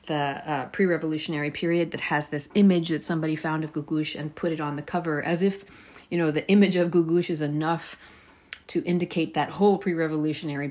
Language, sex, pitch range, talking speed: English, female, 150-185 Hz, 200 wpm